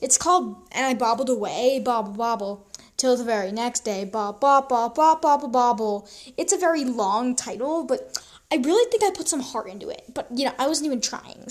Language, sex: English, female